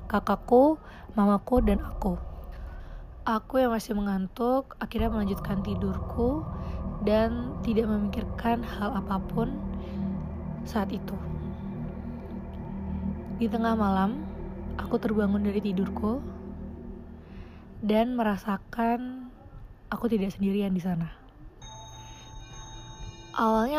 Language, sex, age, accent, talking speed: Indonesian, female, 20-39, native, 85 wpm